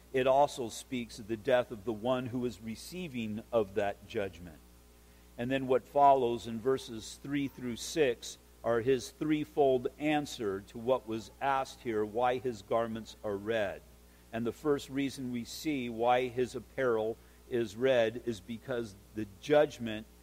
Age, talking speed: 50-69, 155 wpm